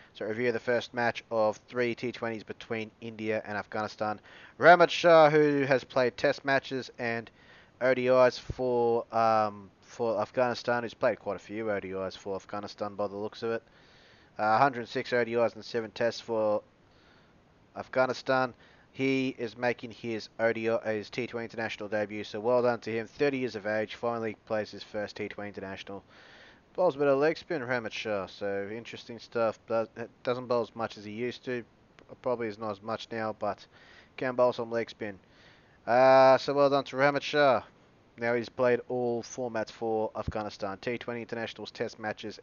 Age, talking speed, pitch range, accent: 20-39, 170 wpm, 110-125 Hz, Australian